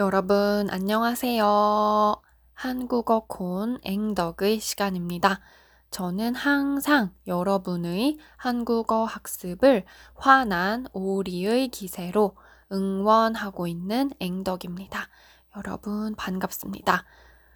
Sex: female